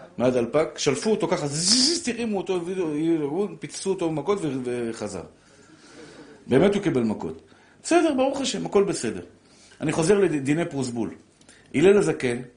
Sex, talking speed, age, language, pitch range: male, 135 wpm, 50-69, Hebrew, 140-195 Hz